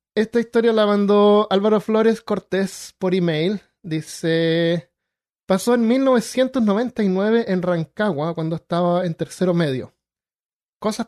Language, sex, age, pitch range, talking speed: Spanish, male, 20-39, 165-195 Hz, 115 wpm